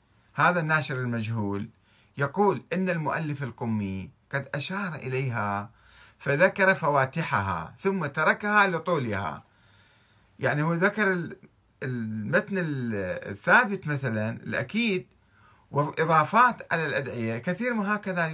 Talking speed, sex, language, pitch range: 90 wpm, male, Arabic, 105-155 Hz